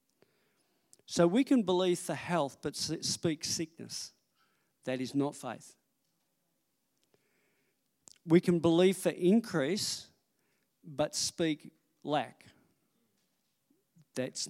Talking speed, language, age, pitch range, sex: 90 wpm, English, 50-69, 145-190 Hz, male